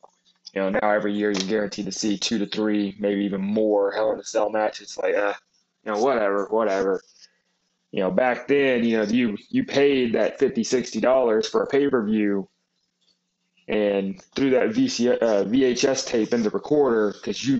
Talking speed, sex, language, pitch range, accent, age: 190 wpm, male, English, 110-140 Hz, American, 20-39